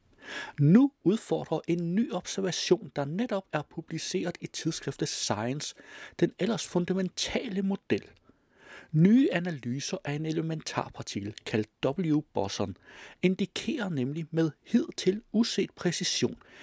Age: 60-79